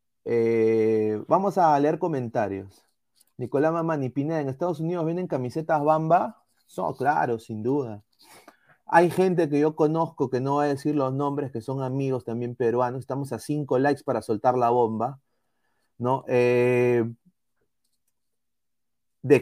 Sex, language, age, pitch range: male, Spanish, 30-49, 125-170 Hz